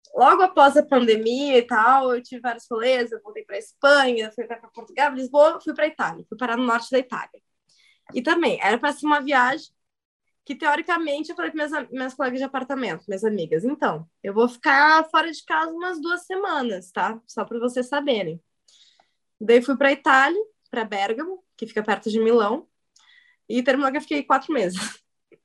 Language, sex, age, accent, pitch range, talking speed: Portuguese, female, 20-39, Brazilian, 235-325 Hz, 195 wpm